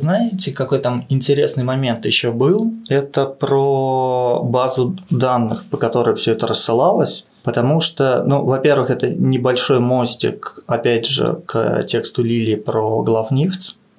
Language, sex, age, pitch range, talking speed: Russian, male, 20-39, 115-135 Hz, 130 wpm